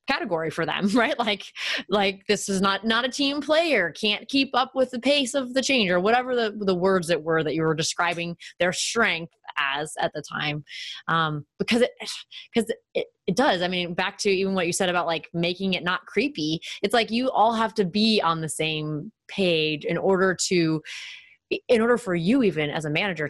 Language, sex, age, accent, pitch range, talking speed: English, female, 20-39, American, 165-210 Hz, 210 wpm